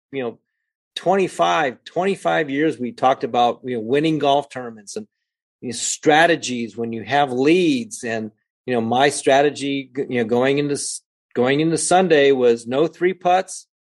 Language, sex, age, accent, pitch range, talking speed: English, male, 40-59, American, 130-170 Hz, 170 wpm